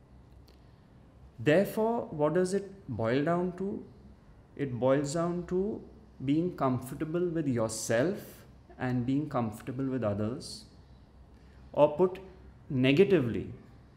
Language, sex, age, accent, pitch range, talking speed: English, male, 30-49, Indian, 120-165 Hz, 100 wpm